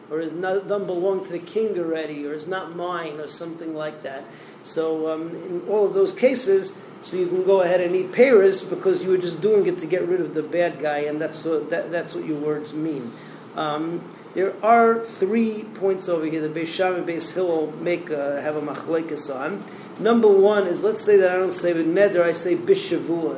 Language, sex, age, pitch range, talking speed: English, male, 40-59, 160-195 Hz, 215 wpm